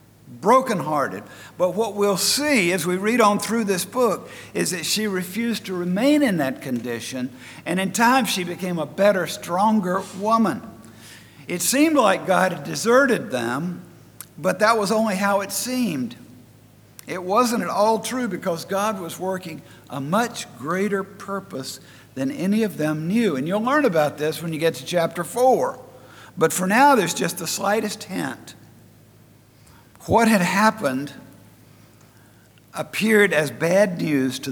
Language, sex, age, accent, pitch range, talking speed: English, male, 50-69, American, 130-210 Hz, 155 wpm